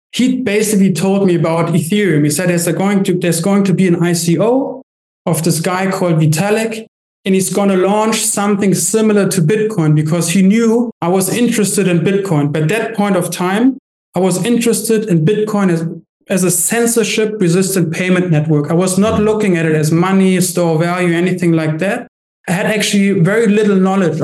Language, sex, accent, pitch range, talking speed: English, male, German, 170-210 Hz, 185 wpm